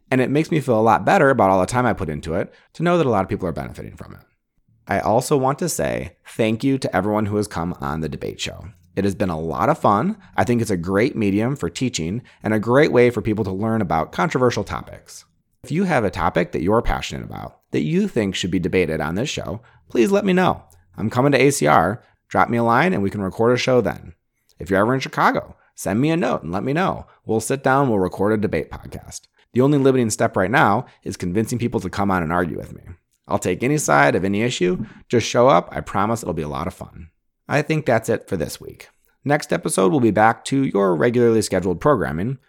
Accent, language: American, English